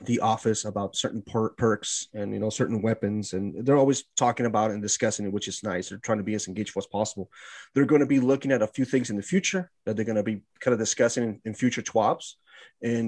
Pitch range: 105-140 Hz